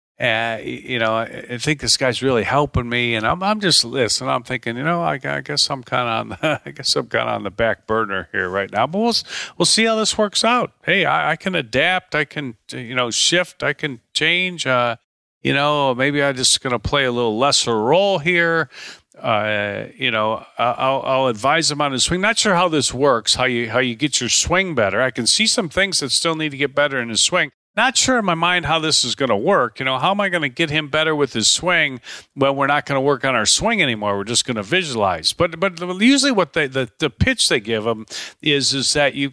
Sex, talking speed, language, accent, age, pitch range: male, 250 wpm, English, American, 40-59, 125-175 Hz